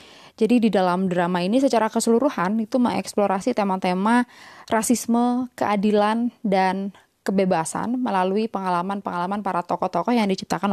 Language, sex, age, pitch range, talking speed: English, female, 20-39, 190-230 Hz, 110 wpm